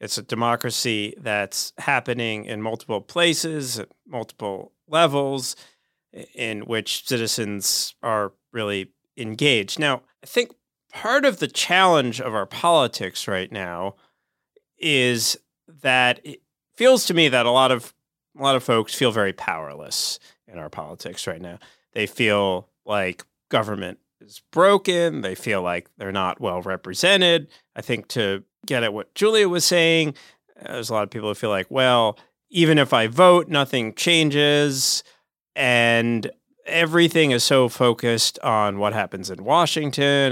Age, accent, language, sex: 30-49, American, English, male